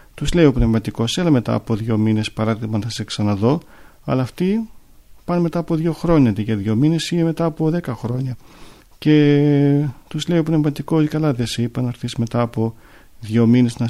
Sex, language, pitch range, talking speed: male, Greek, 110-135 Hz, 190 wpm